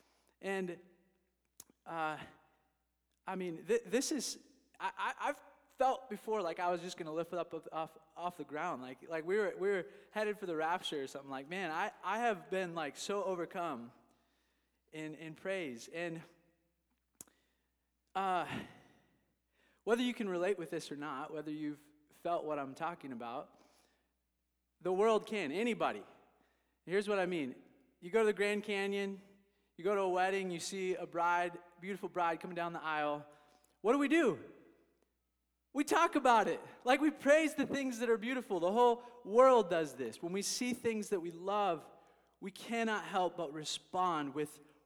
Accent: American